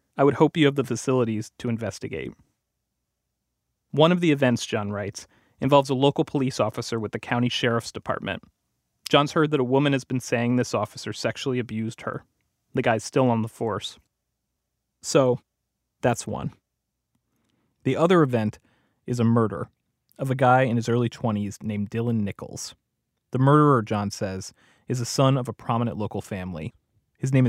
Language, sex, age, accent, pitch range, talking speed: English, male, 30-49, American, 110-130 Hz, 170 wpm